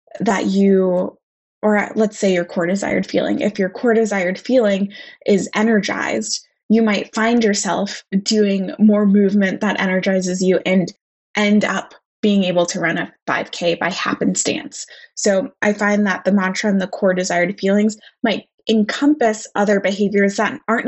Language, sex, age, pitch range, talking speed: English, female, 20-39, 195-230 Hz, 155 wpm